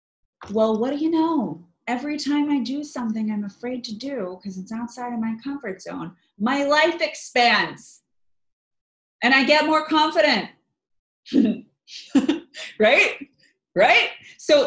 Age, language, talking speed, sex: 30-49, English, 130 wpm, female